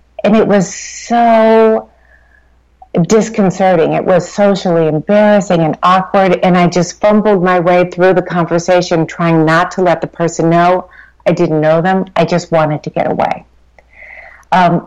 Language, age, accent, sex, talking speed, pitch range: English, 50-69, American, female, 155 wpm, 165-195 Hz